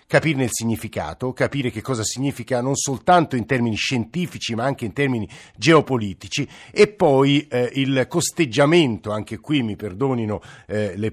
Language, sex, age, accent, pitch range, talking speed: Italian, male, 50-69, native, 105-135 Hz, 150 wpm